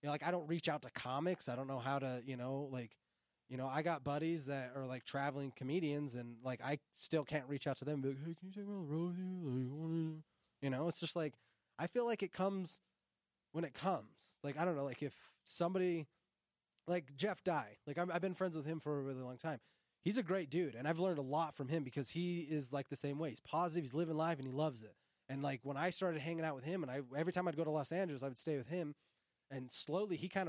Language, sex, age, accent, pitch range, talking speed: English, male, 20-39, American, 140-175 Hz, 275 wpm